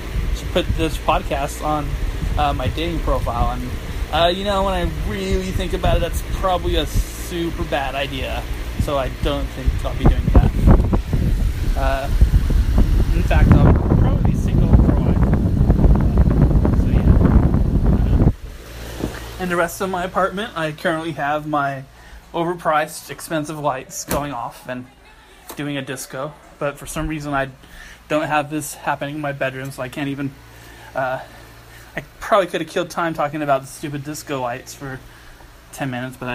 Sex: male